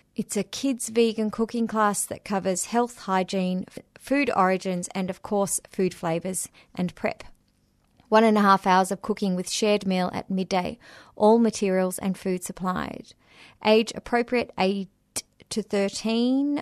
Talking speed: 150 wpm